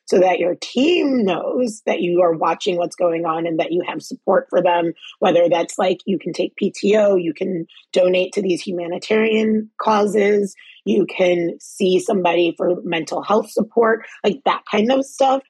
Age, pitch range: 30-49, 180-230 Hz